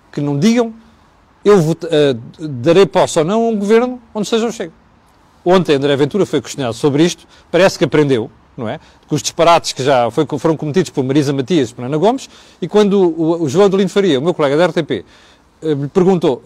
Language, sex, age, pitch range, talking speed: Portuguese, male, 40-59, 145-210 Hz, 205 wpm